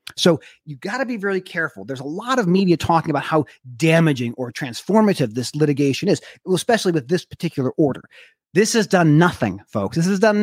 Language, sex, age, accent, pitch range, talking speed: English, male, 30-49, American, 140-195 Hz, 195 wpm